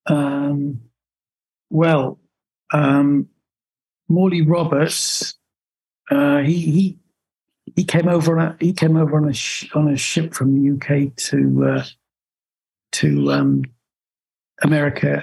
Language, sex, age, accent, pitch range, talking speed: English, male, 60-79, British, 135-155 Hz, 120 wpm